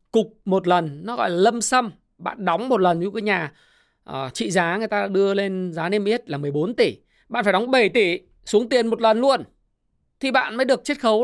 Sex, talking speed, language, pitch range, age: male, 235 wpm, Vietnamese, 190-255 Hz, 20-39